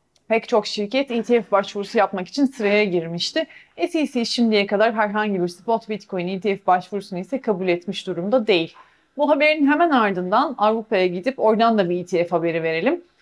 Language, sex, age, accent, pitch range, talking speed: Turkish, female, 30-49, native, 200-270 Hz, 160 wpm